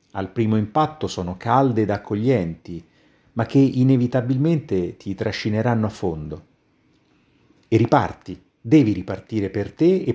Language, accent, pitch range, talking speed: Italian, native, 95-130 Hz, 125 wpm